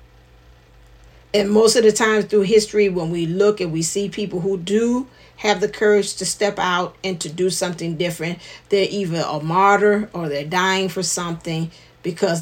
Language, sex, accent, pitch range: English, female, American, 145-205 Hz